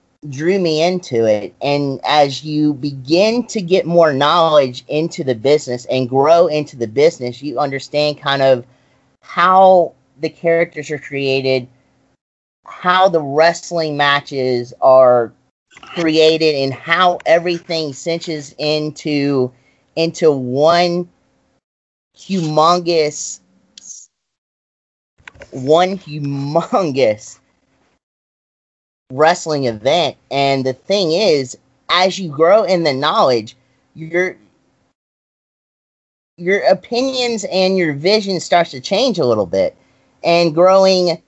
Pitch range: 140-180 Hz